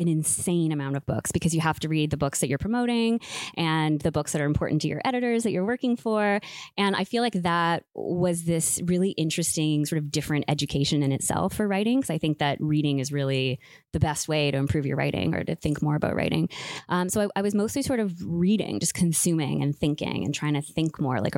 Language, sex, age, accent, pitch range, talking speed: English, female, 20-39, American, 145-175 Hz, 235 wpm